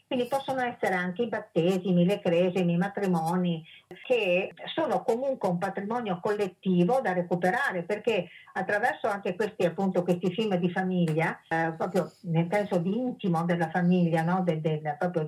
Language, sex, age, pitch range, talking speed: Italian, female, 50-69, 175-215 Hz, 155 wpm